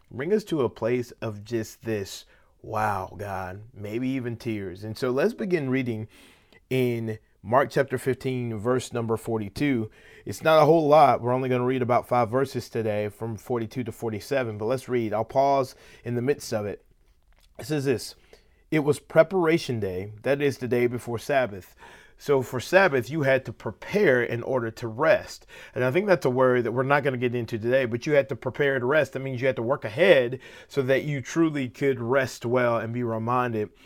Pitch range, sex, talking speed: 115-140 Hz, male, 205 wpm